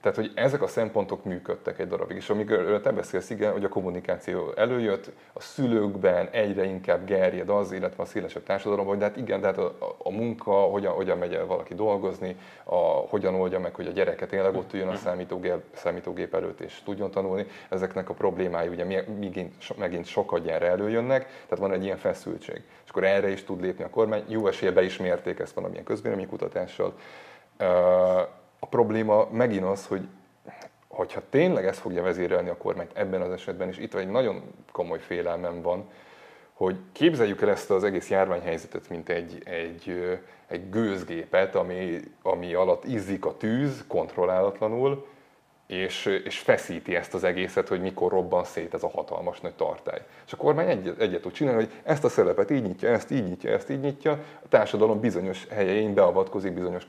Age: 30-49